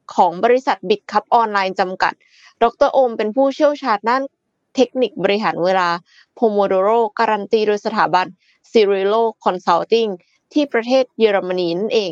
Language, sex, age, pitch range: Thai, female, 20-39, 190-245 Hz